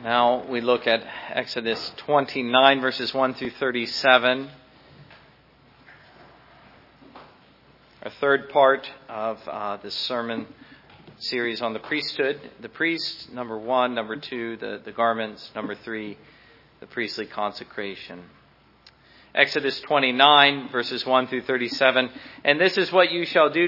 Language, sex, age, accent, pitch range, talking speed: English, male, 40-59, American, 130-150 Hz, 120 wpm